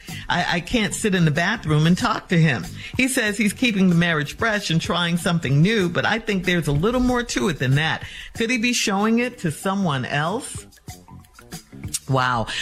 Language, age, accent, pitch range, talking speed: English, 50-69, American, 145-215 Hz, 200 wpm